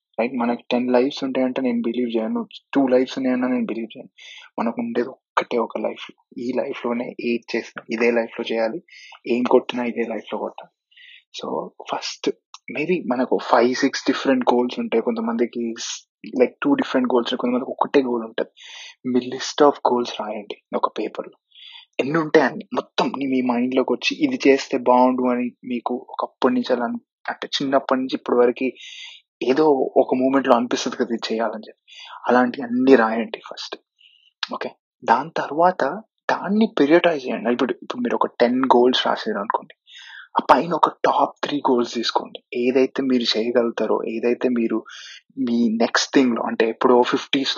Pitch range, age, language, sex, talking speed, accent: 120-135 Hz, 20-39, Telugu, male, 140 wpm, native